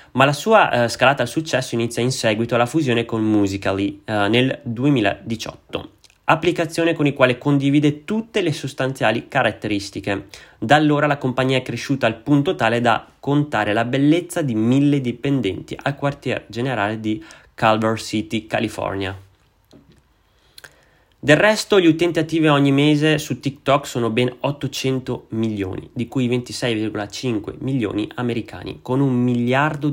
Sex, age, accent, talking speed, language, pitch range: male, 30-49, native, 140 wpm, Italian, 110-140 Hz